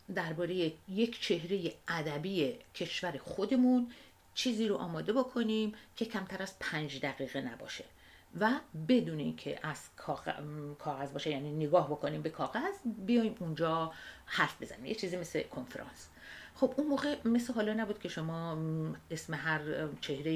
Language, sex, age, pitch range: Persian, female, 50-69, 150-210 Hz